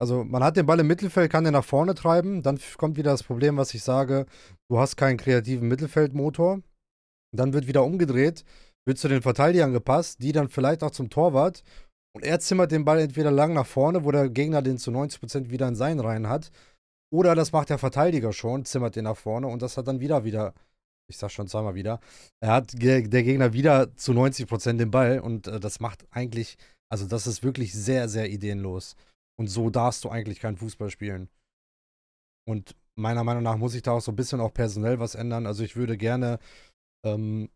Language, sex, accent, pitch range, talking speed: German, male, German, 115-145 Hz, 205 wpm